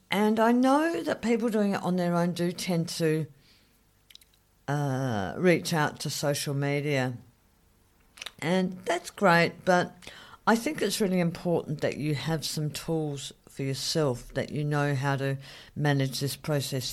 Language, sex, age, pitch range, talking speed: English, female, 50-69, 135-195 Hz, 150 wpm